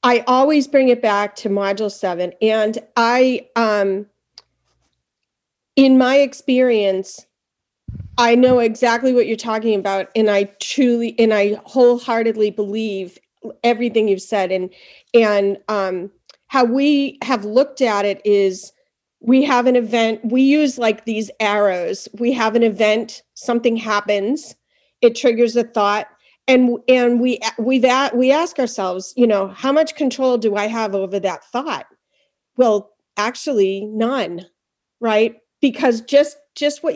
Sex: female